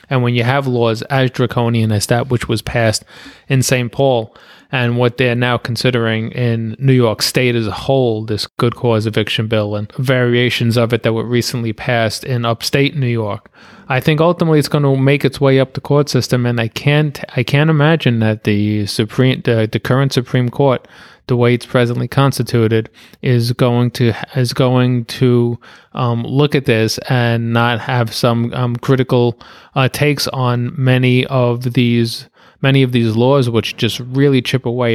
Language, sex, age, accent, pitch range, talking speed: English, male, 30-49, American, 120-140 Hz, 185 wpm